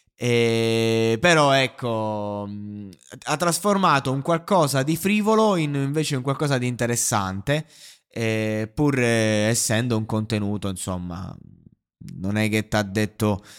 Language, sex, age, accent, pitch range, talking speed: Italian, male, 20-39, native, 110-145 Hz, 125 wpm